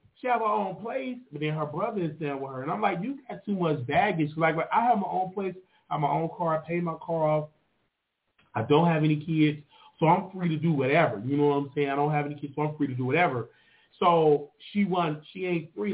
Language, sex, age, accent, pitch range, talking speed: English, male, 30-49, American, 125-170 Hz, 265 wpm